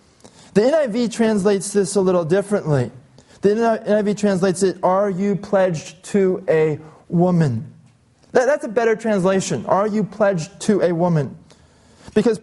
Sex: male